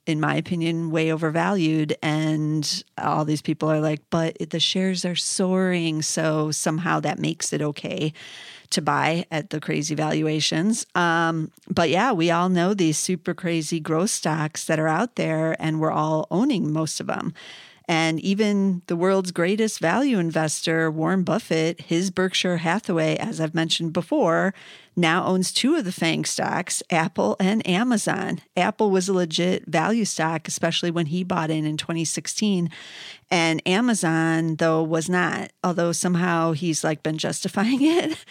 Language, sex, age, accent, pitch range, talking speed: English, female, 40-59, American, 160-190 Hz, 160 wpm